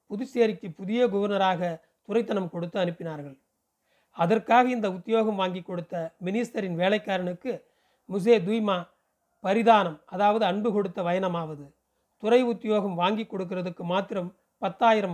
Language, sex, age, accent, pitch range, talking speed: Tamil, male, 40-59, native, 180-225 Hz, 105 wpm